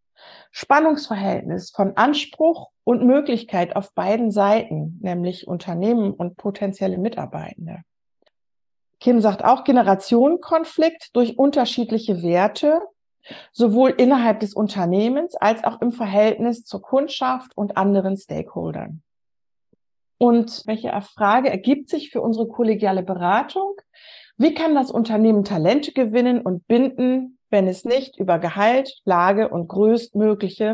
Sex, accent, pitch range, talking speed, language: female, German, 205-275 Hz, 115 wpm, German